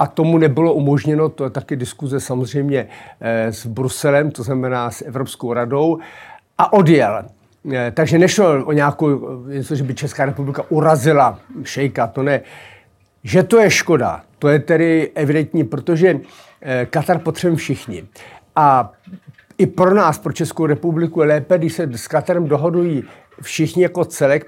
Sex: male